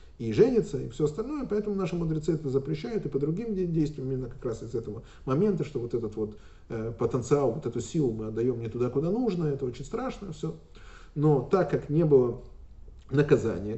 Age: 30-49